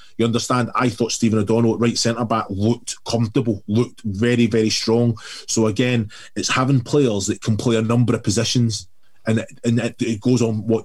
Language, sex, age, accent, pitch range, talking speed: English, male, 20-39, British, 110-125 Hz, 195 wpm